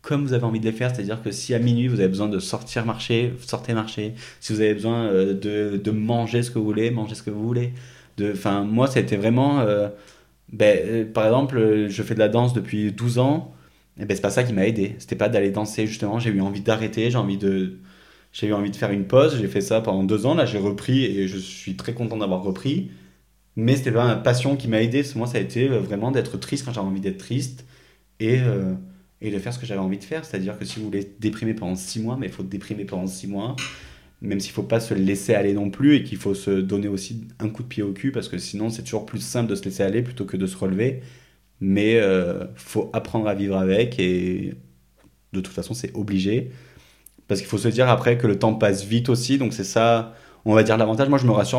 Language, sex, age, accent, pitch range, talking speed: French, male, 20-39, French, 100-120 Hz, 255 wpm